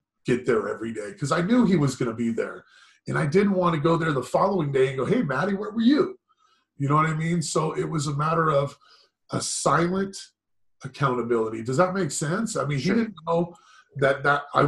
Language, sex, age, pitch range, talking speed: English, male, 30-49, 135-175 Hz, 225 wpm